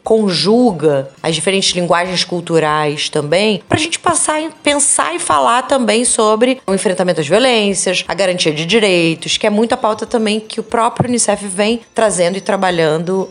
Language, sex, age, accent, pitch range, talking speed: Portuguese, female, 20-39, Brazilian, 160-205 Hz, 165 wpm